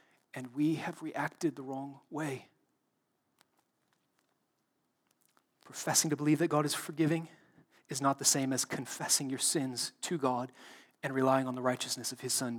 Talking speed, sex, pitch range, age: 155 wpm, male, 140-205 Hz, 30-49